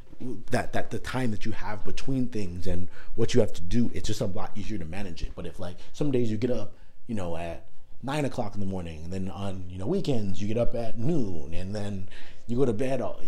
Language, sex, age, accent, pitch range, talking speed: English, male, 30-49, American, 95-120 Hz, 255 wpm